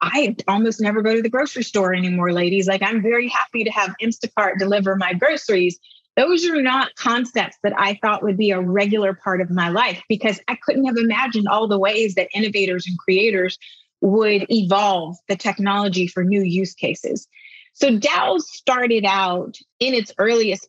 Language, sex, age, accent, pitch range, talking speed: English, female, 30-49, American, 195-235 Hz, 180 wpm